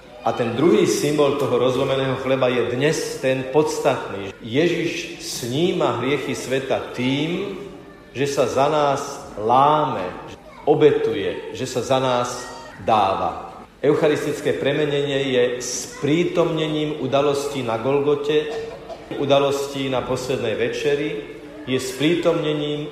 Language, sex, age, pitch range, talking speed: Slovak, male, 50-69, 130-165 Hz, 105 wpm